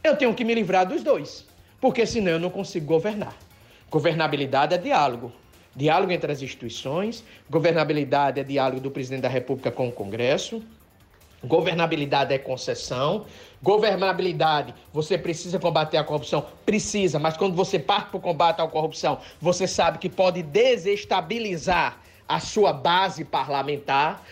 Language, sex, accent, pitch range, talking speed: Portuguese, male, Brazilian, 155-225 Hz, 140 wpm